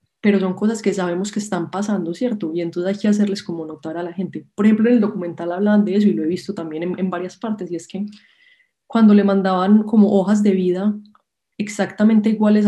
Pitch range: 175-215 Hz